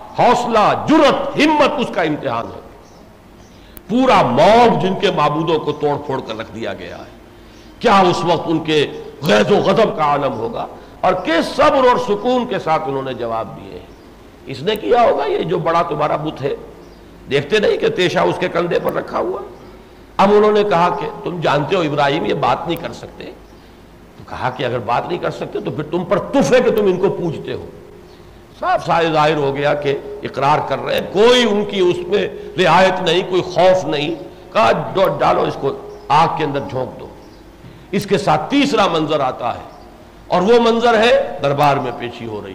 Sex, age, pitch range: male, 60-79, 145-210 Hz